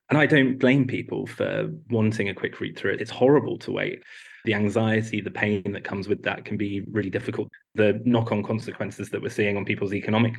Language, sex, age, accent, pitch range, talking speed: English, male, 20-39, British, 100-115 Hz, 215 wpm